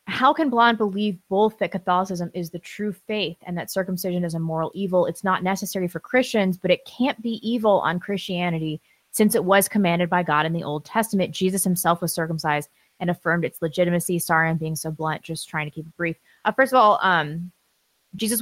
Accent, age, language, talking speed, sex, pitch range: American, 20-39, English, 210 wpm, female, 165-195 Hz